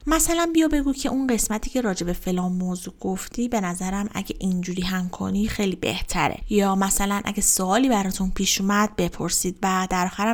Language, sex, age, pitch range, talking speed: Persian, female, 30-49, 185-215 Hz, 175 wpm